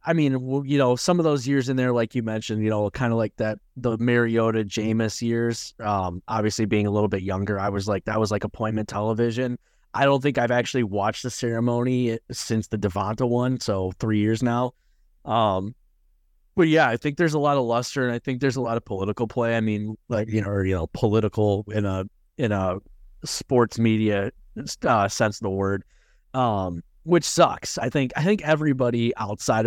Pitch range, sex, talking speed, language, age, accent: 100-120 Hz, male, 205 wpm, English, 20-39, American